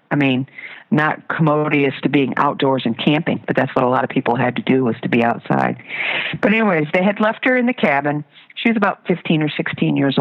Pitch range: 135-185 Hz